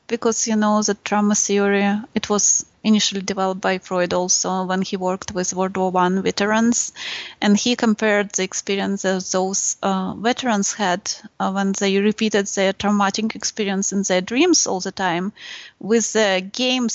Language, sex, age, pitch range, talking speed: English, female, 20-39, 195-235 Hz, 165 wpm